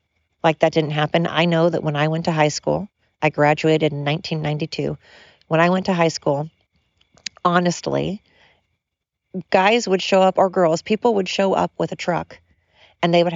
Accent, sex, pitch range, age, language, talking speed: American, female, 115-170 Hz, 40-59, English, 180 wpm